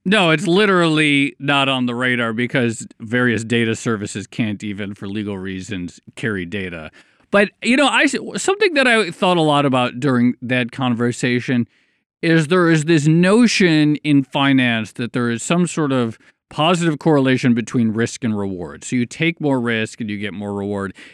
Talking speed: 170 wpm